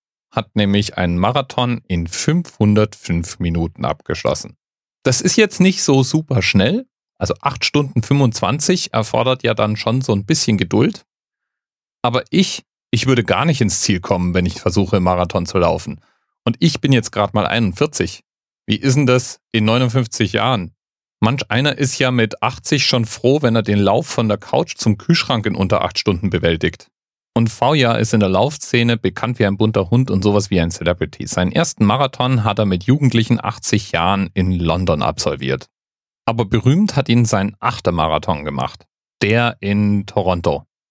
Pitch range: 95-130 Hz